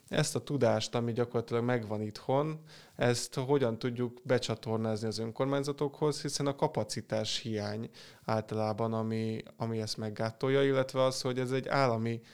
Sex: male